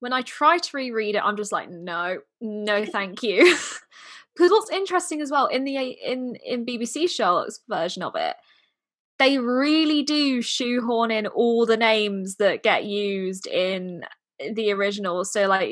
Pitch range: 205-285 Hz